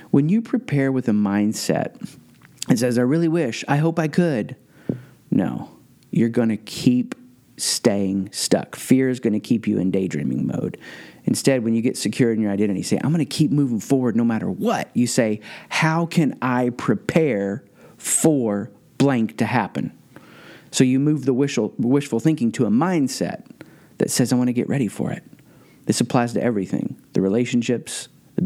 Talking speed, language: 180 wpm, English